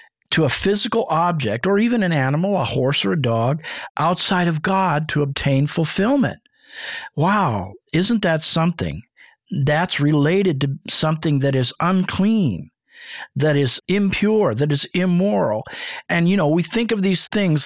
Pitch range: 140-180 Hz